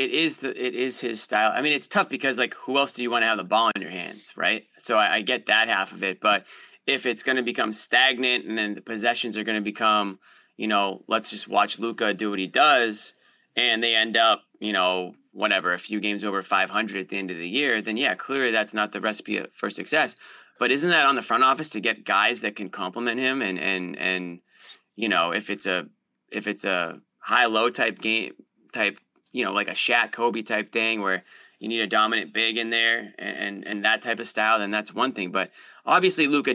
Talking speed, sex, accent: 240 wpm, male, American